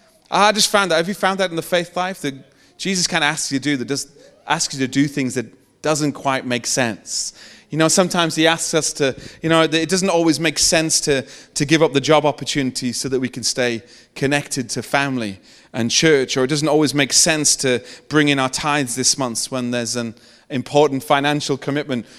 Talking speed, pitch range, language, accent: 220 wpm, 145-180 Hz, English, British